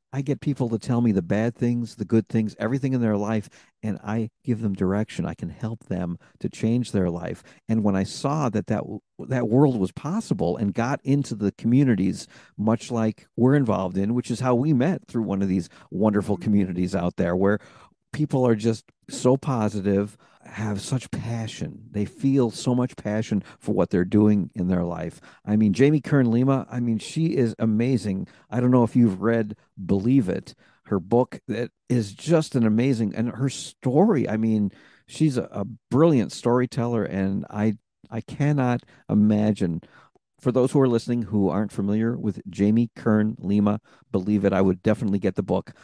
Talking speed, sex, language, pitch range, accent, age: 190 wpm, male, English, 105-125 Hz, American, 50-69